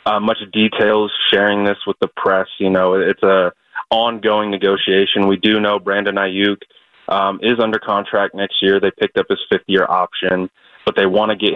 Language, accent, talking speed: English, American, 190 wpm